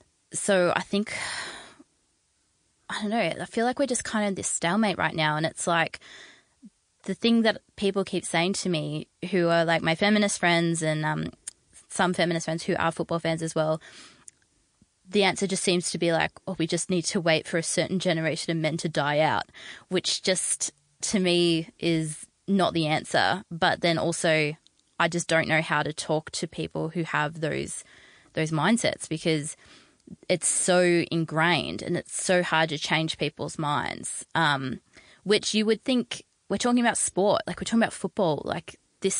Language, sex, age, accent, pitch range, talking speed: English, female, 20-39, Australian, 160-190 Hz, 185 wpm